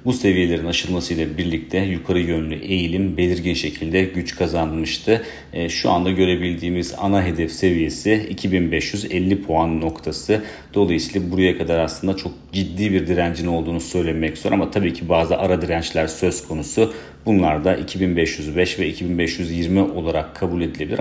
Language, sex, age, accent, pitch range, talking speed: Turkish, male, 40-59, native, 80-95 Hz, 135 wpm